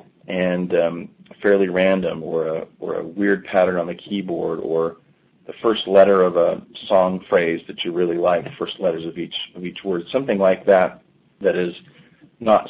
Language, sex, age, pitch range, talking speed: English, male, 40-59, 90-100 Hz, 180 wpm